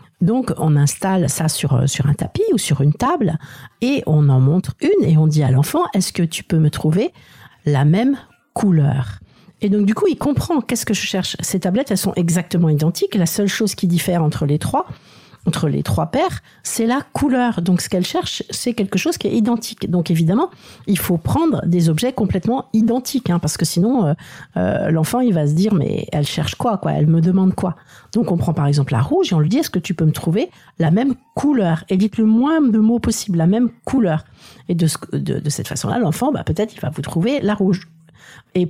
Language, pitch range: French, 150-205 Hz